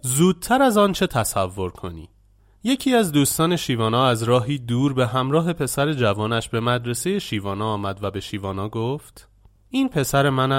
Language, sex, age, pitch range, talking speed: Persian, male, 30-49, 105-160 Hz, 160 wpm